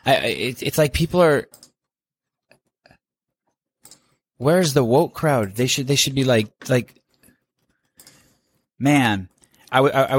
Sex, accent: male, American